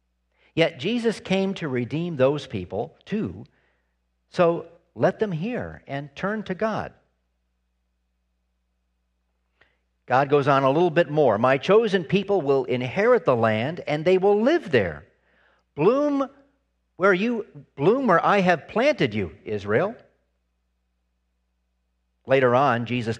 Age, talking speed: 50-69, 125 wpm